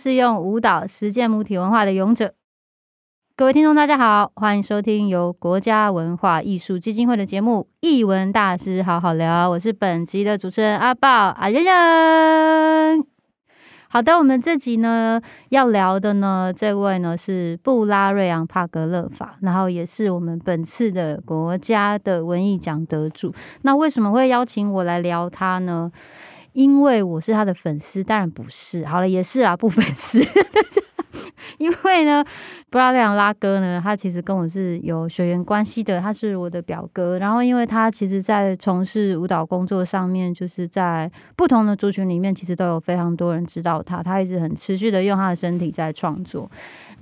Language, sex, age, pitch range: Chinese, female, 20-39, 180-225 Hz